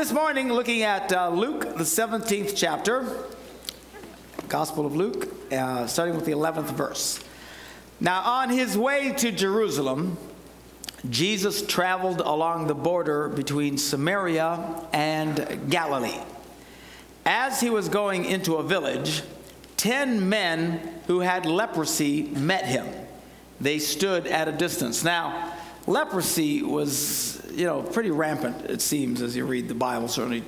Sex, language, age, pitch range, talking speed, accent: male, English, 60-79, 140-180 Hz, 130 wpm, American